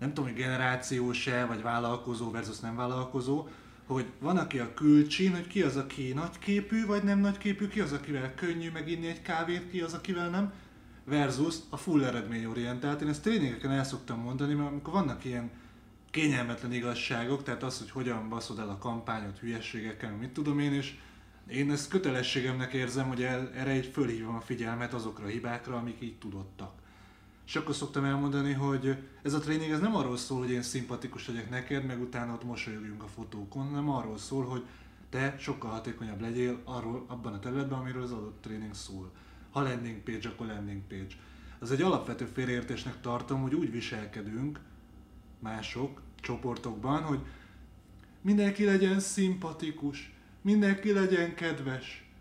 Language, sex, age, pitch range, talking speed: Hungarian, male, 20-39, 115-145 Hz, 170 wpm